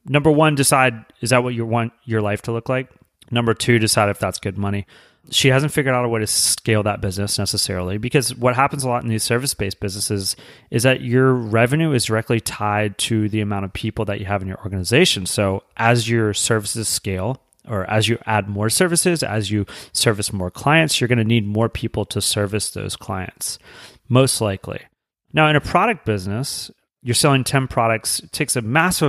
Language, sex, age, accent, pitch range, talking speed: English, male, 30-49, American, 105-130 Hz, 205 wpm